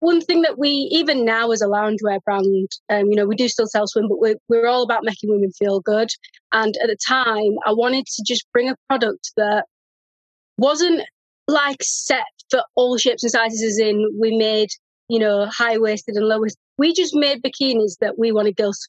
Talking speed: 205 wpm